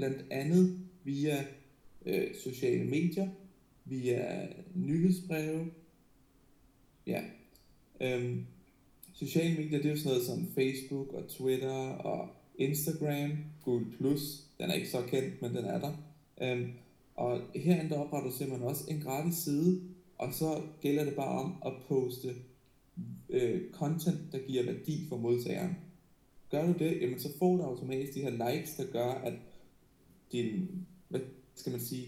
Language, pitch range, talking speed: Danish, 130-170 Hz, 150 wpm